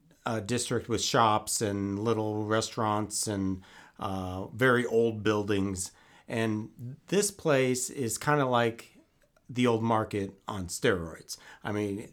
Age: 40-59